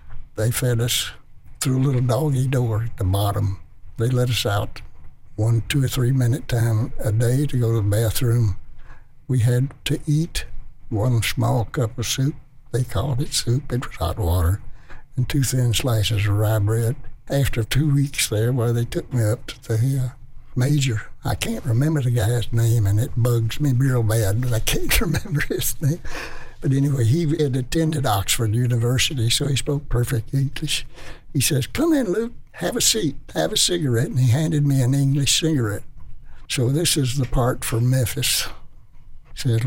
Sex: male